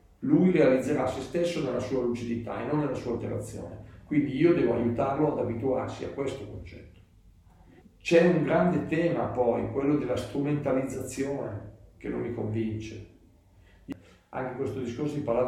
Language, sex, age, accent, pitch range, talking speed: Italian, male, 50-69, native, 100-140 Hz, 145 wpm